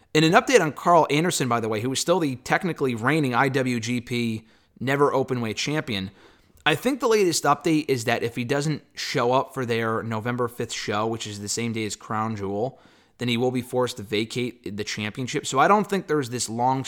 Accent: American